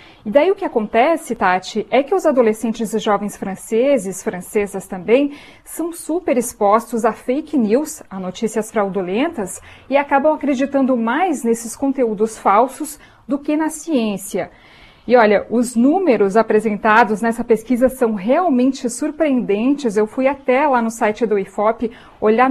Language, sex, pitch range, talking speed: Portuguese, female, 220-285 Hz, 145 wpm